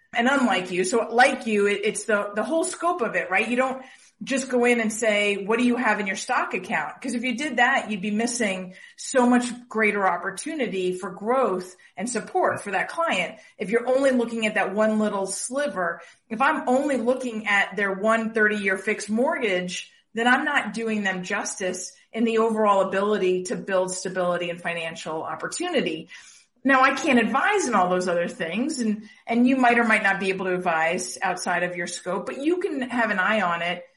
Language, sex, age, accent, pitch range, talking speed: English, female, 40-59, American, 190-245 Hz, 205 wpm